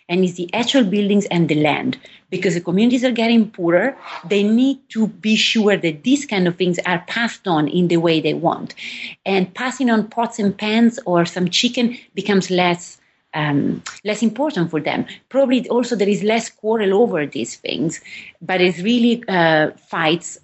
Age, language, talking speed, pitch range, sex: 30-49, English, 180 wpm, 170-215 Hz, female